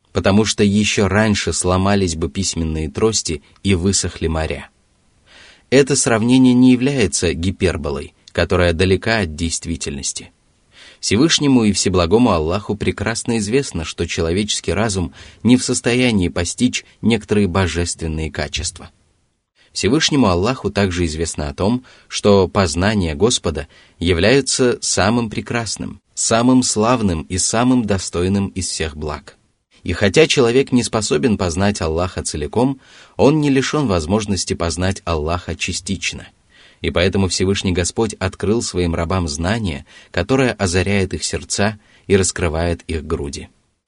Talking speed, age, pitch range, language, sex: 120 wpm, 20-39, 85-110 Hz, Russian, male